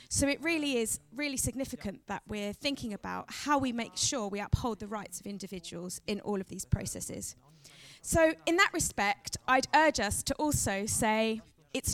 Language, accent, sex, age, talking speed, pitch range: German, British, female, 20-39, 180 wpm, 205-275 Hz